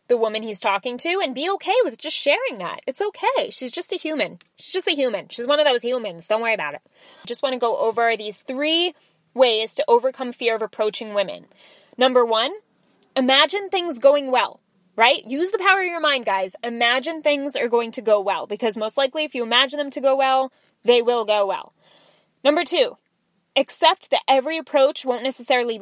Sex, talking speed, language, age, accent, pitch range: female, 205 wpm, English, 10-29, American, 225-300 Hz